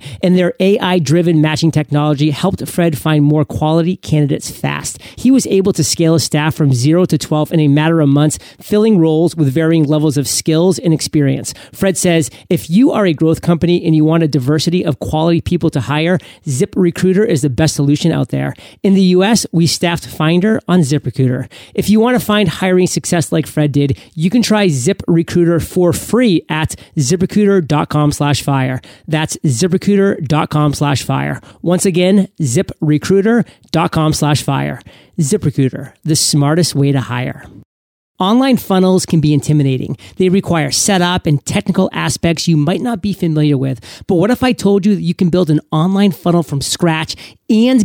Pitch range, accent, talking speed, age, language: 150-185 Hz, American, 175 wpm, 30-49, English